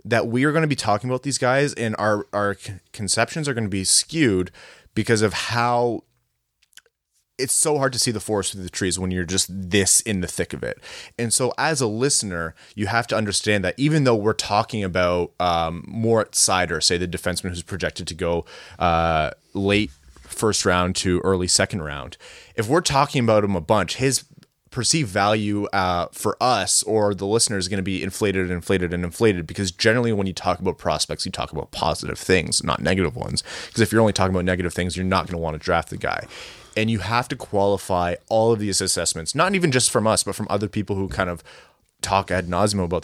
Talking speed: 220 wpm